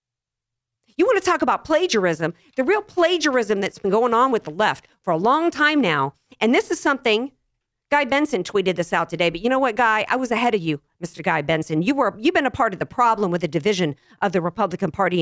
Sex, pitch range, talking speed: female, 175-275 Hz, 245 wpm